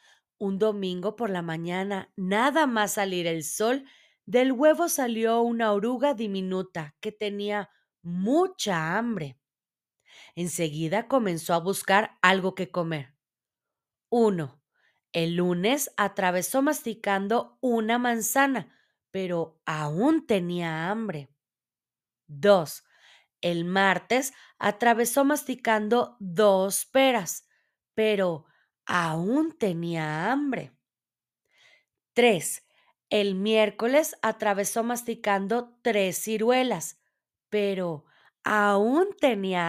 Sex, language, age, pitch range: female, Spanish, 20-39, 180-245 Hz